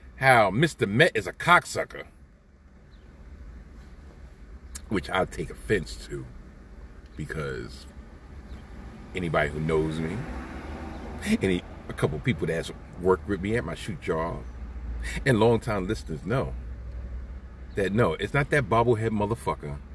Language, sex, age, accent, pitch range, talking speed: English, male, 40-59, American, 70-115 Hz, 115 wpm